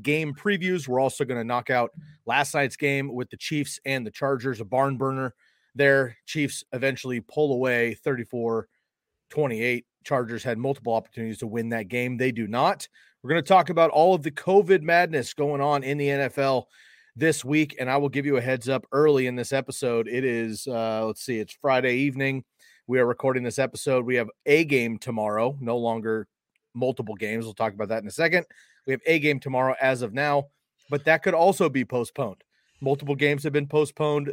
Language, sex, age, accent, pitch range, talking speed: English, male, 30-49, American, 120-145 Hz, 200 wpm